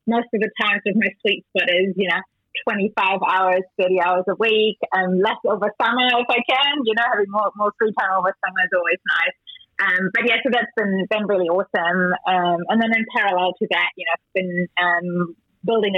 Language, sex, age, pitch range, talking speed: English, female, 30-49, 180-220 Hz, 220 wpm